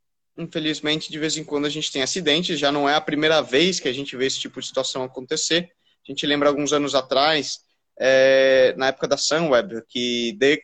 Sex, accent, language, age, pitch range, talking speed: male, Brazilian, Portuguese, 20-39, 135-165 Hz, 210 wpm